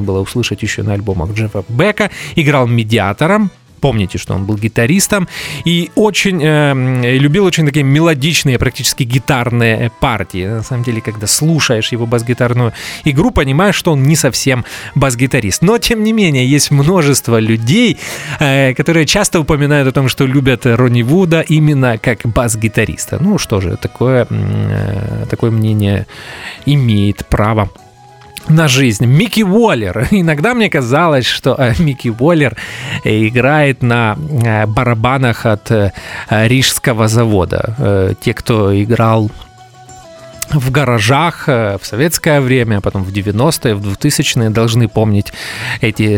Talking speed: 130 wpm